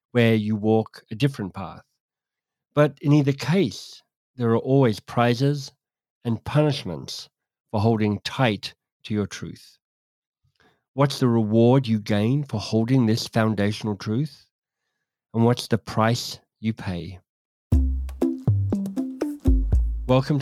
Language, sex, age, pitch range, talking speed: English, male, 50-69, 105-135 Hz, 115 wpm